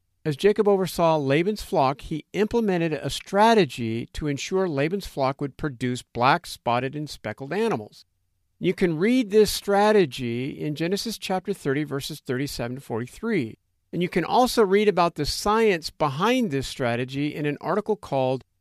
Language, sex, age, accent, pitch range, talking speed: English, male, 50-69, American, 125-180 Hz, 155 wpm